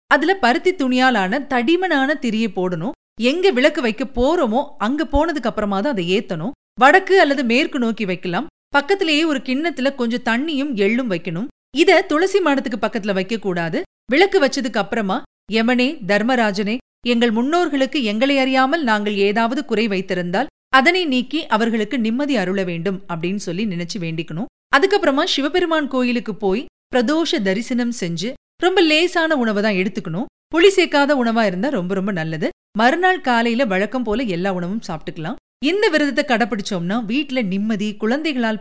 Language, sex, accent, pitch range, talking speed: Tamil, female, native, 200-285 Hz, 130 wpm